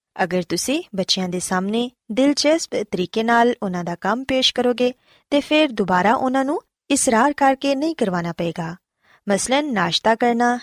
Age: 20-39